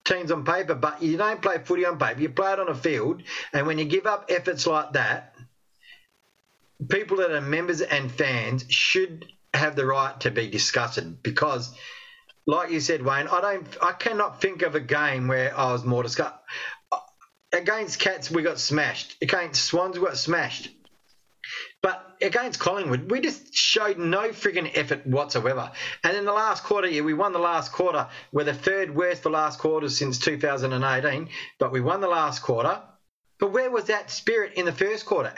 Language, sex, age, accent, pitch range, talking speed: English, male, 40-59, Australian, 145-190 Hz, 190 wpm